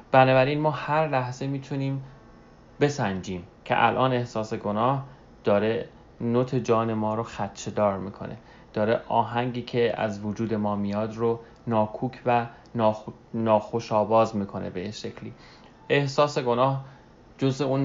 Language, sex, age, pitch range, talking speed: English, male, 30-49, 105-125 Hz, 130 wpm